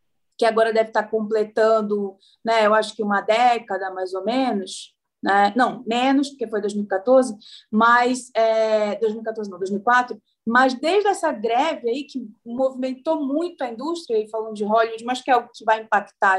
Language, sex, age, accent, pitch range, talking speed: Portuguese, female, 20-39, Brazilian, 210-265 Hz, 170 wpm